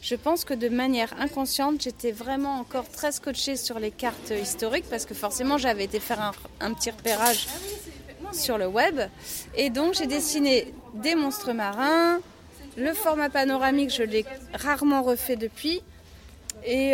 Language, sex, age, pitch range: French, female, 30-49, 225-275 Hz